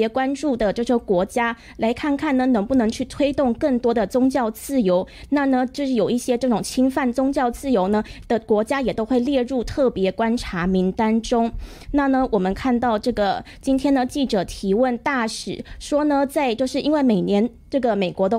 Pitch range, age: 215-265 Hz, 20-39